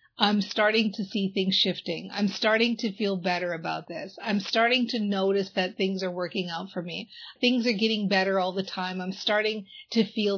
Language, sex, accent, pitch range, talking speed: English, female, American, 200-275 Hz, 200 wpm